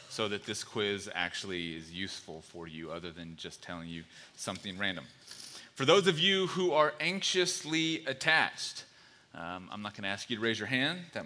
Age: 30-49